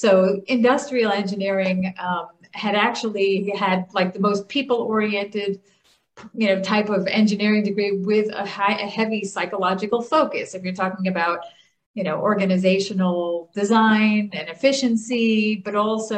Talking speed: 135 wpm